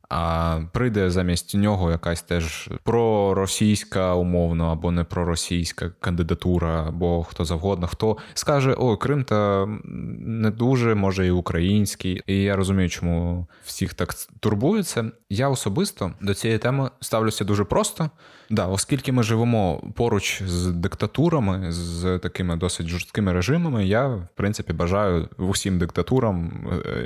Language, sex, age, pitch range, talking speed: Ukrainian, male, 20-39, 90-110 Hz, 130 wpm